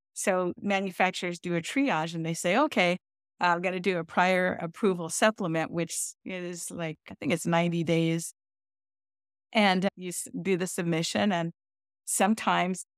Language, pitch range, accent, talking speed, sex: English, 170-205 Hz, American, 155 wpm, female